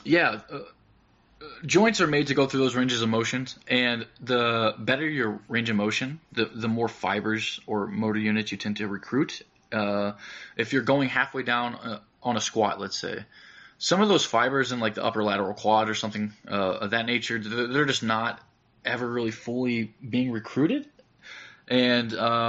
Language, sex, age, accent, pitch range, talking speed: English, male, 20-39, American, 110-125 Hz, 180 wpm